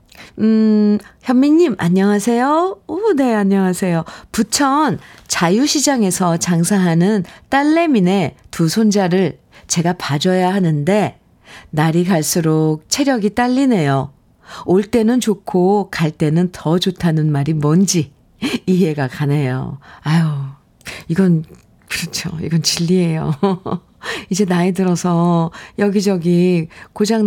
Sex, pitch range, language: female, 165-215 Hz, Korean